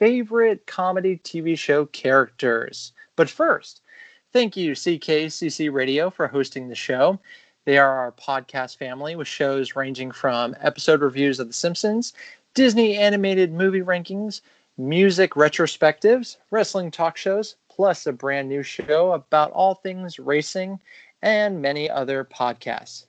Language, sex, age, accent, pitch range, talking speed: English, male, 30-49, American, 140-185 Hz, 135 wpm